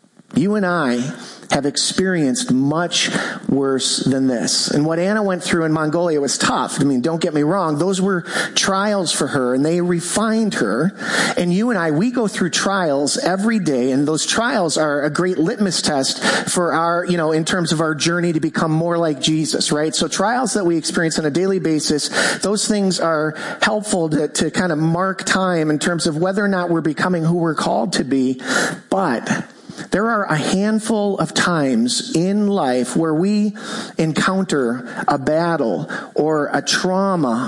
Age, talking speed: 40-59, 185 wpm